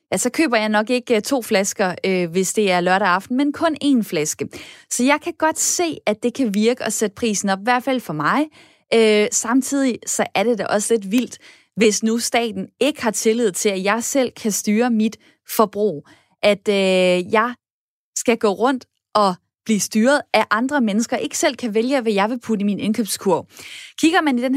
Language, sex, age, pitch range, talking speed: Danish, female, 20-39, 210-260 Hz, 205 wpm